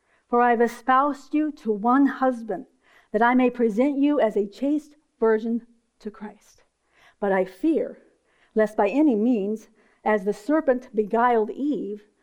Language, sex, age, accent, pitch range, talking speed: English, female, 50-69, American, 210-260 Hz, 145 wpm